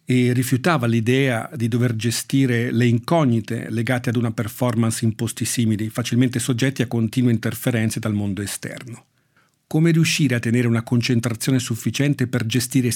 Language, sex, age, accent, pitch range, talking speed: Italian, male, 50-69, native, 115-145 Hz, 150 wpm